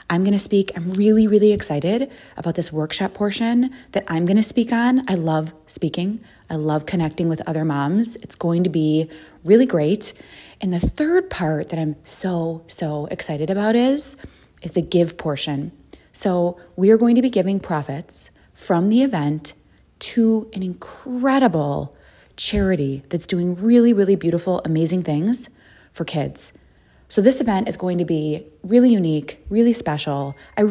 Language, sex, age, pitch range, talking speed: English, female, 20-39, 165-225 Hz, 165 wpm